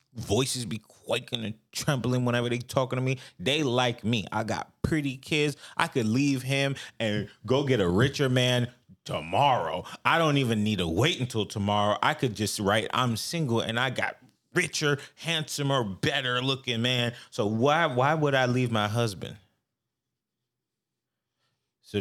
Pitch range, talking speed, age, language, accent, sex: 100-130 Hz, 160 wpm, 20-39, English, American, male